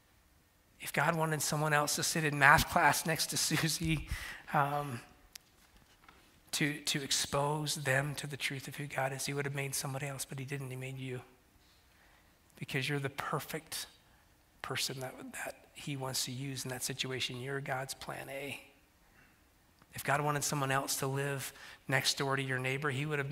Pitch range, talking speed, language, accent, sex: 125-145 Hz, 180 wpm, English, American, male